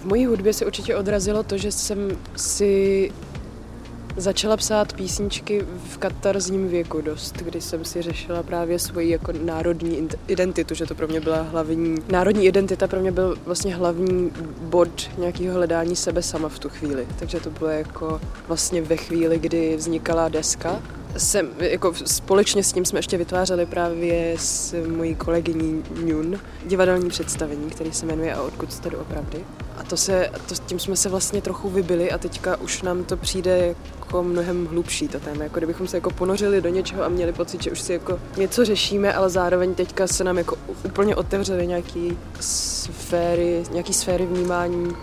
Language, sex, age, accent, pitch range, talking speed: Czech, female, 20-39, native, 165-185 Hz, 175 wpm